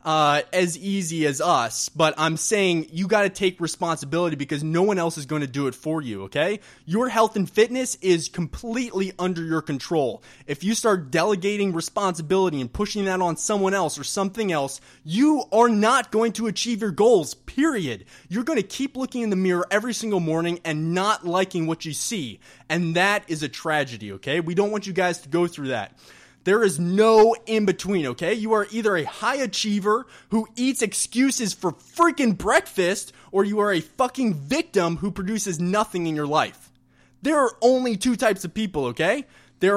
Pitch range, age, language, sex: 165-220 Hz, 20-39, English, male